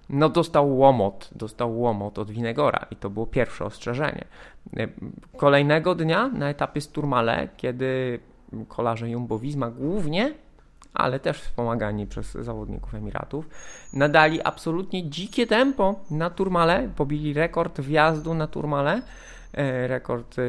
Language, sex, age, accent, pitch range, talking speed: Polish, male, 20-39, native, 115-160 Hz, 115 wpm